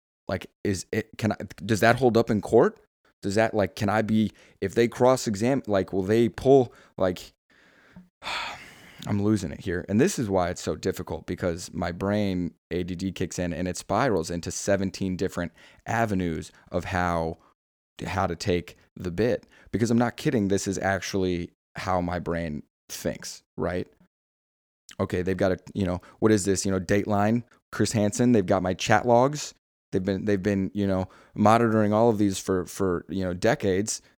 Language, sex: English, male